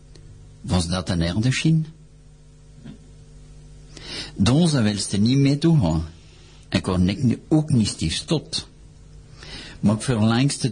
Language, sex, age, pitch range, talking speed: French, male, 50-69, 95-135 Hz, 120 wpm